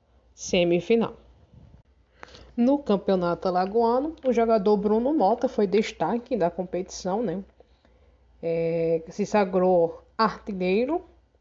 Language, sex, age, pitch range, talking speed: Portuguese, female, 20-39, 180-230 Hz, 90 wpm